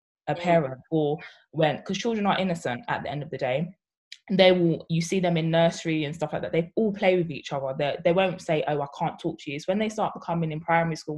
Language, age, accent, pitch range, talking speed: English, 20-39, British, 140-170 Hz, 265 wpm